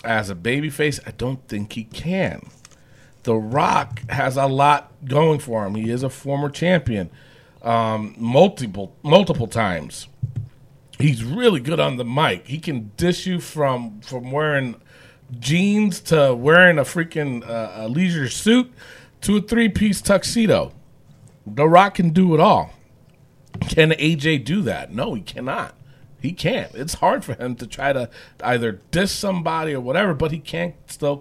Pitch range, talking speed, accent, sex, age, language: 125-165 Hz, 160 wpm, American, male, 40-59, English